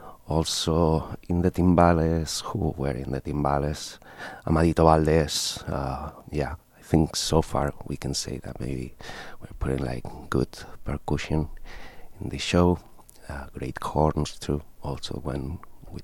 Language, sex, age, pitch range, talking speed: English, male, 30-49, 70-85 Hz, 140 wpm